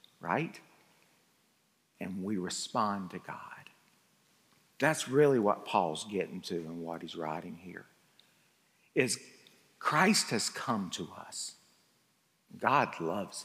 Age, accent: 60-79, American